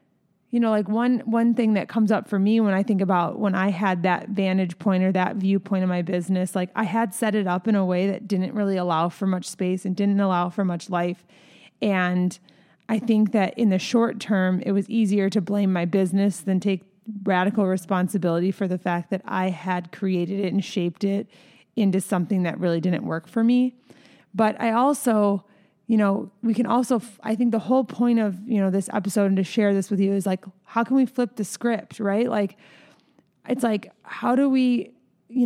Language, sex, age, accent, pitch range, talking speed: English, female, 30-49, American, 190-220 Hz, 215 wpm